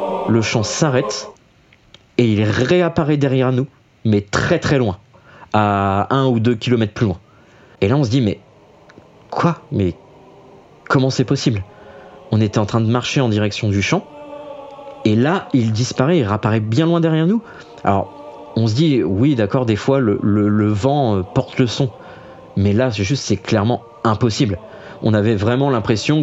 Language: French